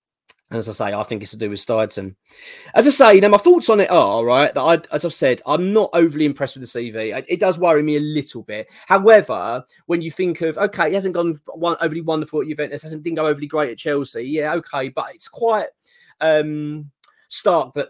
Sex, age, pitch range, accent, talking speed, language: male, 20-39, 120-160 Hz, British, 230 wpm, English